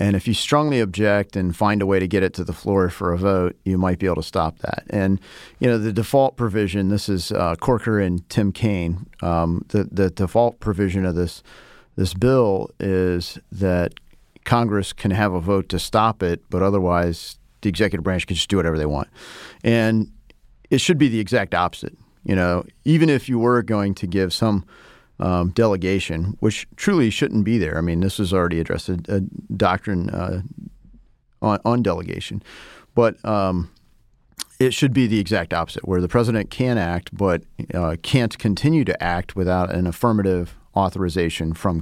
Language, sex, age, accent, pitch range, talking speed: English, male, 40-59, American, 90-110 Hz, 185 wpm